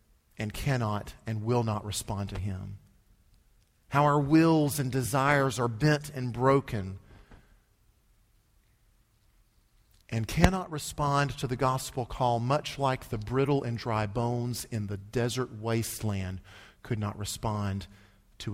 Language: English